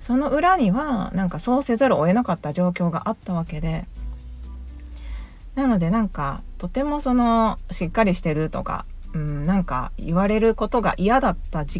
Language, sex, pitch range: Japanese, female, 150-220 Hz